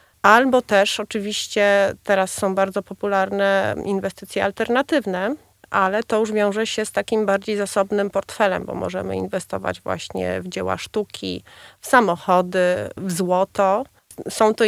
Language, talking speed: Polish, 130 wpm